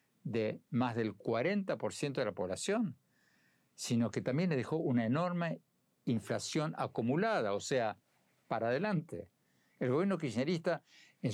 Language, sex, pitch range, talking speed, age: Spanish, male, 120-175 Hz, 125 wpm, 60-79